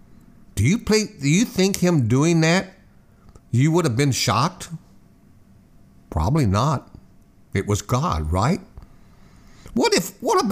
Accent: American